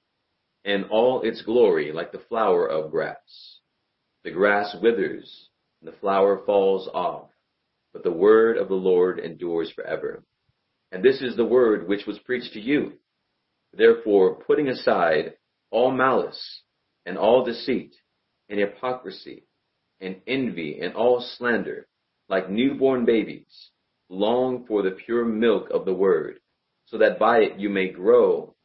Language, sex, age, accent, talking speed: English, male, 40-59, American, 140 wpm